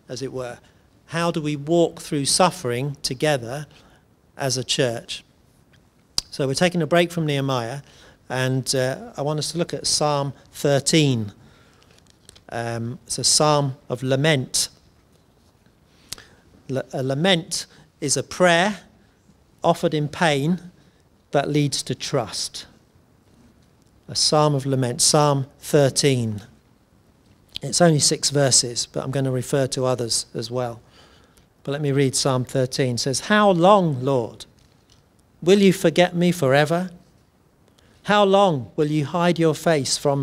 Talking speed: 135 wpm